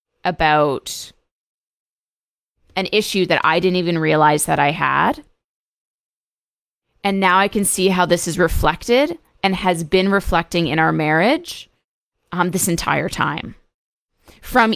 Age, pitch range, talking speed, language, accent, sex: 20-39, 170-215 Hz, 130 wpm, English, American, female